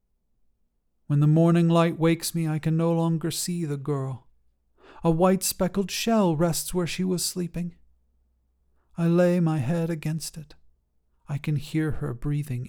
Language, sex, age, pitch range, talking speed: English, male, 40-59, 130-165 Hz, 155 wpm